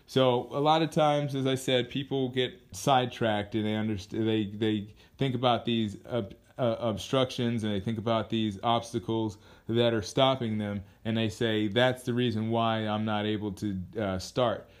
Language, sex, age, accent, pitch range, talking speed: English, male, 30-49, American, 100-135 Hz, 180 wpm